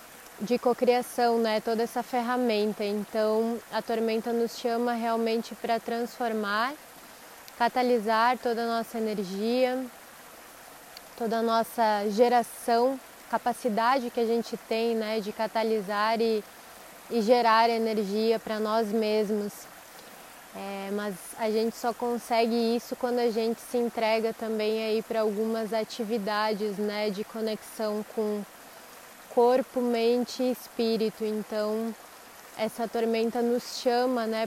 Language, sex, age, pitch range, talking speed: Portuguese, female, 20-39, 220-245 Hz, 120 wpm